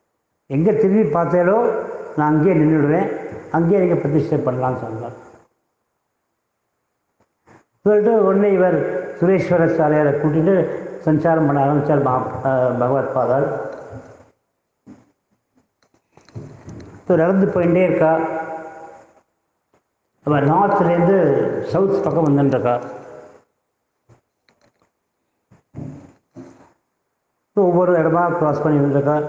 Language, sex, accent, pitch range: English, male, Indian, 145-185 Hz